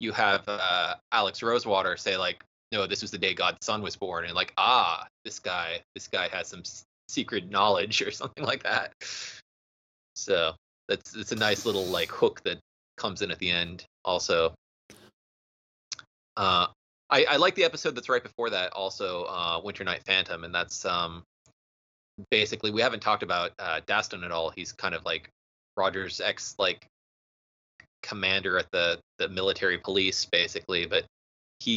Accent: American